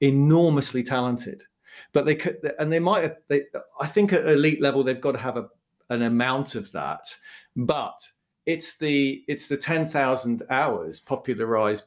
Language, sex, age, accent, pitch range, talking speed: English, male, 40-59, British, 120-170 Hz, 165 wpm